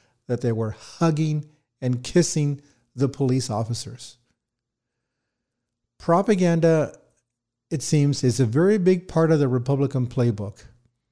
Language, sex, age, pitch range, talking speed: English, male, 50-69, 120-150 Hz, 115 wpm